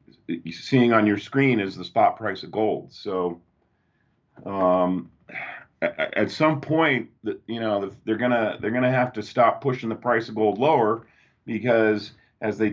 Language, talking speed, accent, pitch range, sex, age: English, 155 wpm, American, 100-125 Hz, male, 40-59